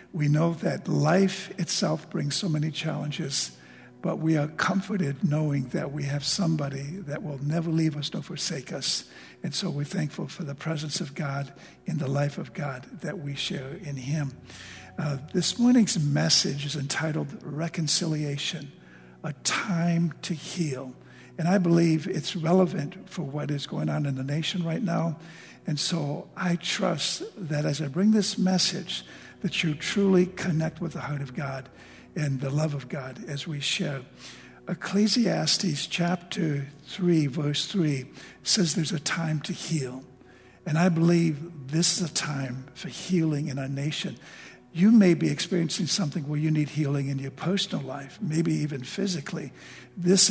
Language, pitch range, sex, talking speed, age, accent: English, 145-180 Hz, male, 165 wpm, 60-79, American